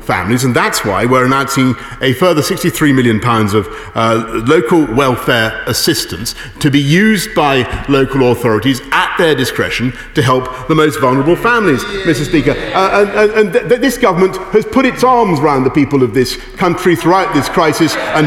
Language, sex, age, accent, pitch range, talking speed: English, male, 40-59, British, 125-180 Hz, 175 wpm